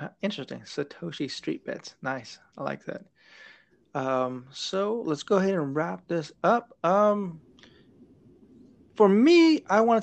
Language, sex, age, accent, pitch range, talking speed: English, male, 20-39, American, 135-175 Hz, 140 wpm